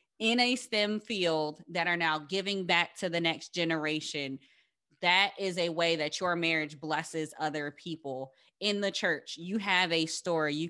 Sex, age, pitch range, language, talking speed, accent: female, 20-39, 155-175 Hz, English, 175 wpm, American